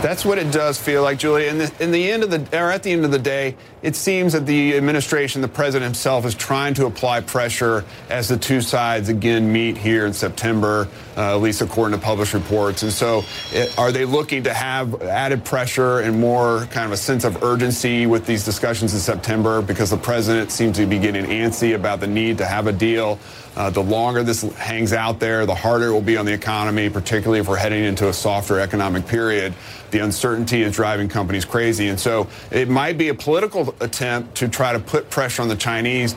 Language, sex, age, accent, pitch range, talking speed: English, male, 30-49, American, 110-130 Hz, 220 wpm